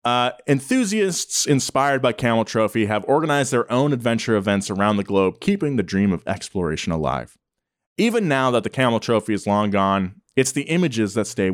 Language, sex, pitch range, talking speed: English, male, 100-130 Hz, 180 wpm